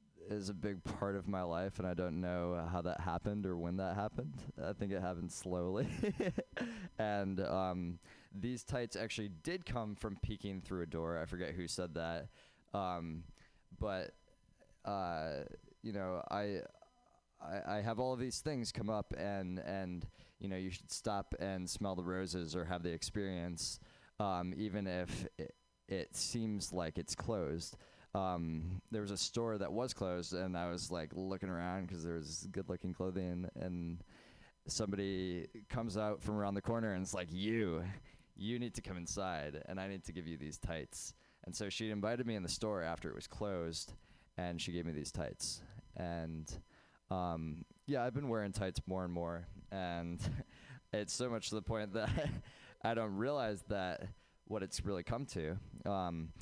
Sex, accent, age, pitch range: male, American, 20-39, 90-105 Hz